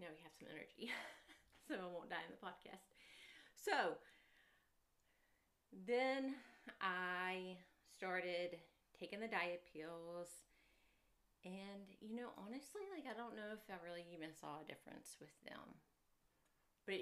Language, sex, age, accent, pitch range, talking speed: English, female, 30-49, American, 160-200 Hz, 135 wpm